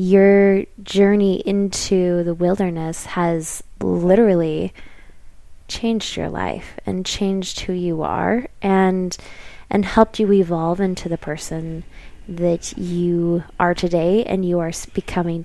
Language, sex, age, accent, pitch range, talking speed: English, female, 20-39, American, 160-200 Hz, 120 wpm